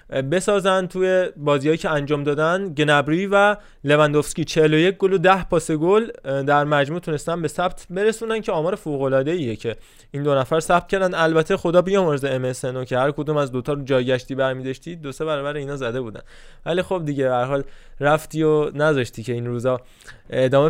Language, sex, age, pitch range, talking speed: Persian, male, 20-39, 140-175 Hz, 175 wpm